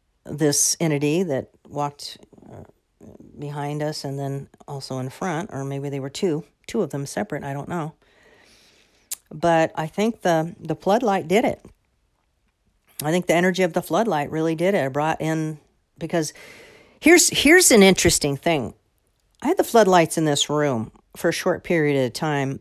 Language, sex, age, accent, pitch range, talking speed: English, female, 50-69, American, 135-170 Hz, 165 wpm